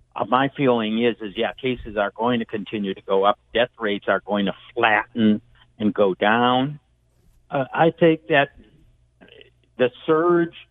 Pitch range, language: 105-130 Hz, English